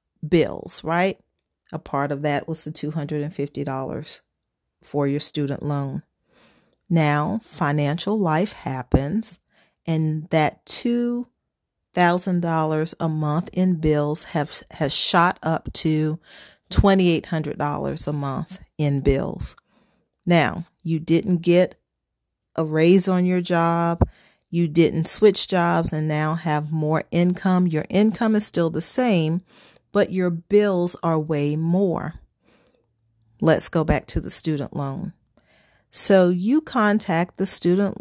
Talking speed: 120 wpm